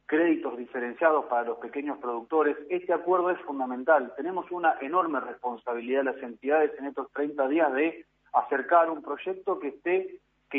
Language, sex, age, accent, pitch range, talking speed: Spanish, male, 40-59, Argentinian, 130-170 Hz, 160 wpm